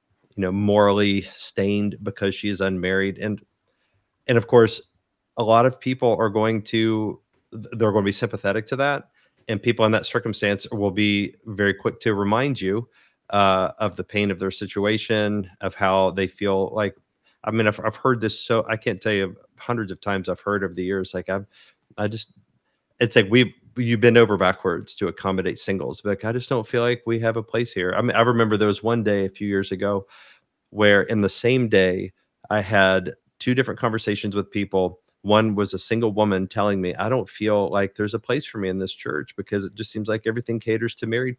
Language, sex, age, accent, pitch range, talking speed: English, male, 30-49, American, 100-115 Hz, 215 wpm